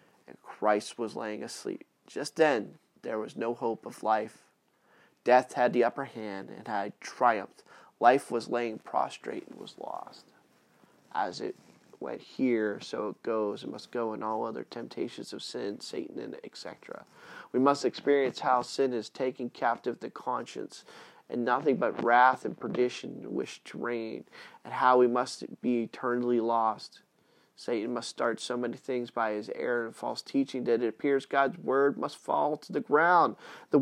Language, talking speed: English, 170 wpm